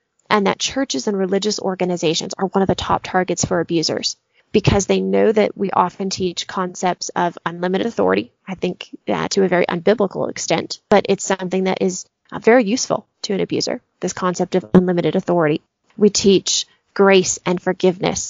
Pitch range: 175-205 Hz